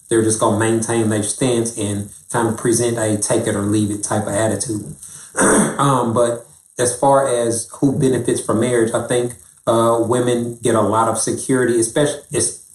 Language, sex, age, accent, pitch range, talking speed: English, male, 30-49, American, 105-120 Hz, 185 wpm